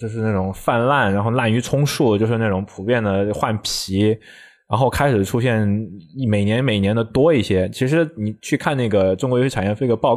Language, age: Chinese, 20-39